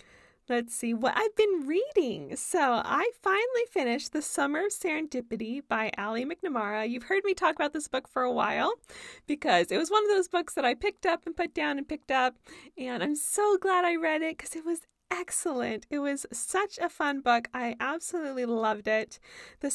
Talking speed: 200 wpm